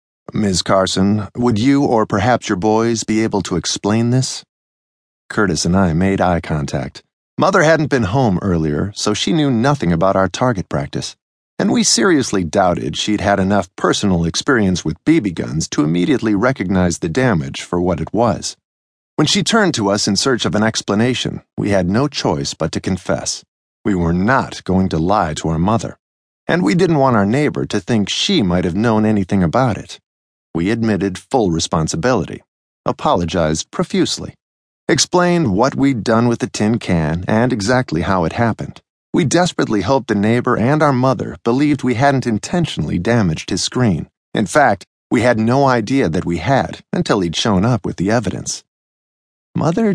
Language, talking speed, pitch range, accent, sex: English, 175 wpm, 90-130 Hz, American, male